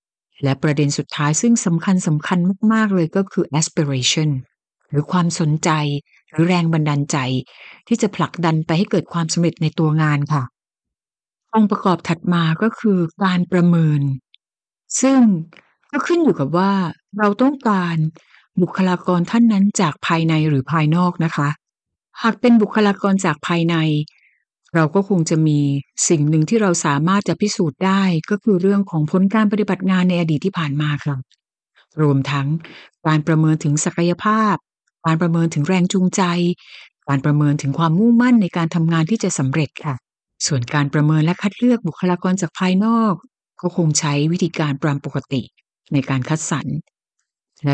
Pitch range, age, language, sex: 155-195 Hz, 60-79, Thai, female